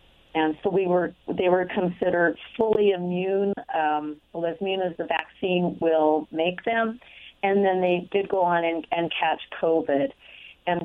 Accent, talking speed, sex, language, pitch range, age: American, 160 wpm, female, English, 170-210 Hz, 40-59